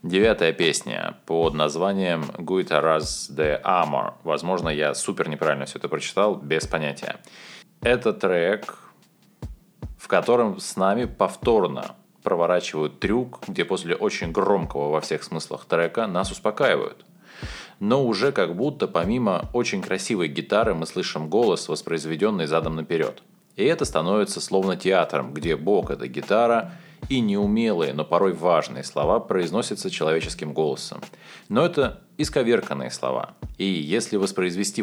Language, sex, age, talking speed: Russian, male, 20-39, 130 wpm